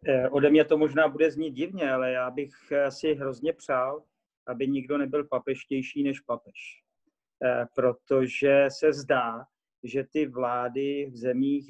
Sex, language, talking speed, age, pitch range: male, Czech, 140 wpm, 40-59, 125-145 Hz